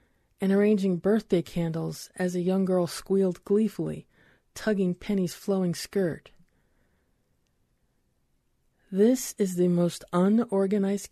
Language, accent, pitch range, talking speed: English, American, 165-195 Hz, 105 wpm